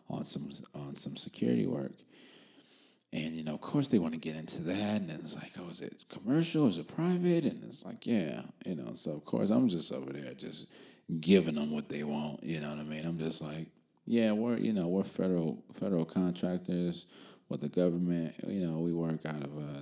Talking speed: 220 wpm